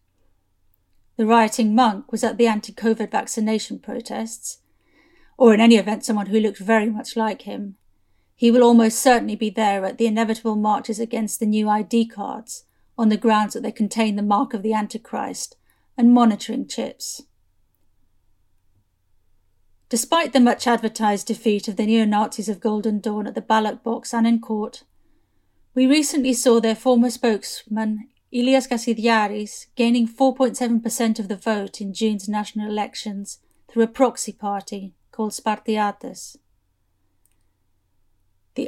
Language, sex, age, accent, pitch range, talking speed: English, female, 40-59, British, 205-240 Hz, 140 wpm